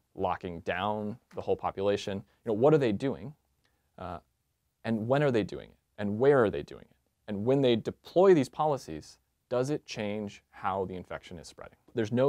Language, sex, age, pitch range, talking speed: English, male, 30-49, 95-115 Hz, 195 wpm